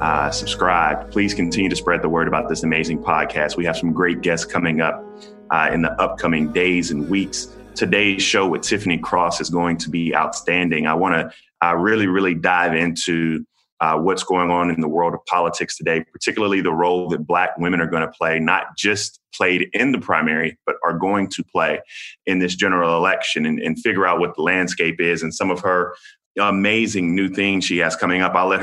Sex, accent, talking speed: male, American, 210 wpm